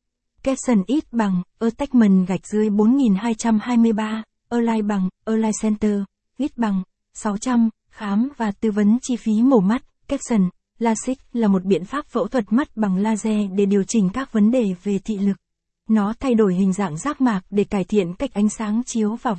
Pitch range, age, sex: 205-240 Hz, 20-39, female